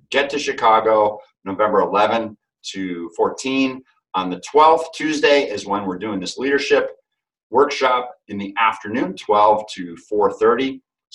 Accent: American